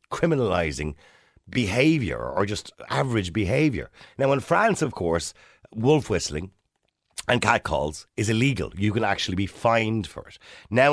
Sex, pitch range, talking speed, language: male, 100-130 Hz, 135 wpm, English